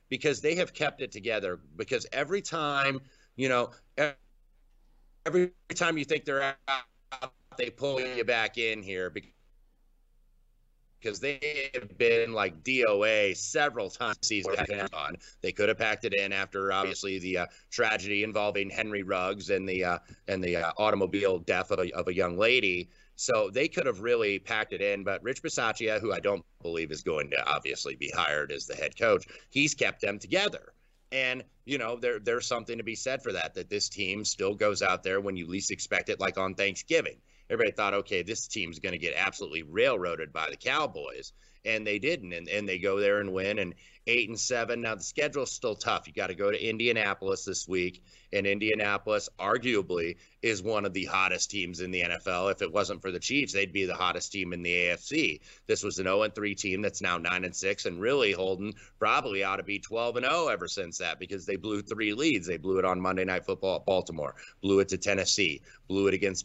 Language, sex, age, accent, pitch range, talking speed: English, male, 30-49, American, 95-140 Hz, 200 wpm